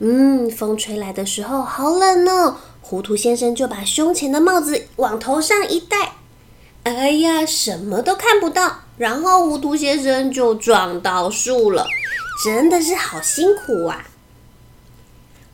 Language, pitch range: Chinese, 220-330 Hz